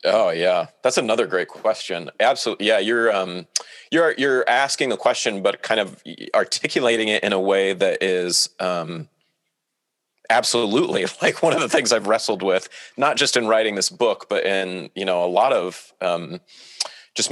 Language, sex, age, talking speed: English, male, 30-49, 175 wpm